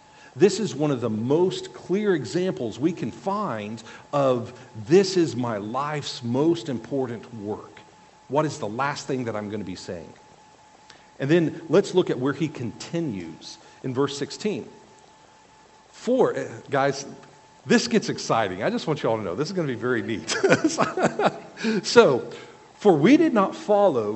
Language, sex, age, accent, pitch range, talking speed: English, male, 50-69, American, 130-200 Hz, 165 wpm